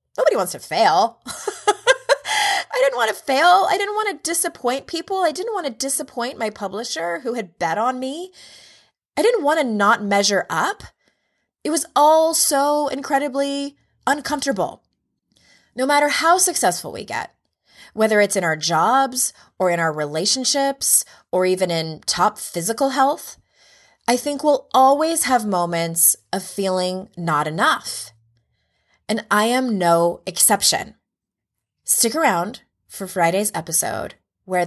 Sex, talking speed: female, 140 wpm